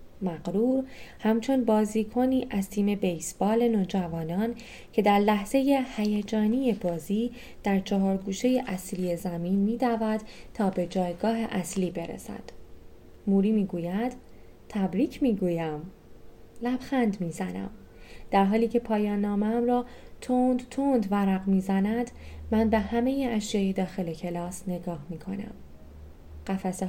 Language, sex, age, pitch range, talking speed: Persian, female, 20-39, 185-230 Hz, 120 wpm